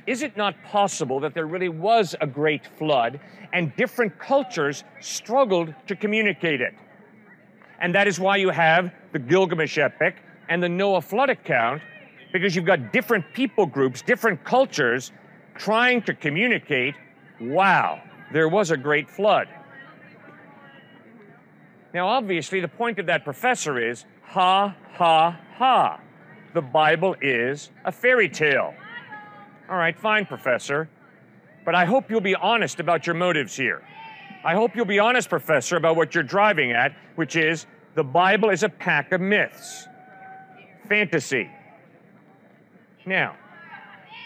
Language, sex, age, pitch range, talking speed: English, male, 50-69, 165-215 Hz, 140 wpm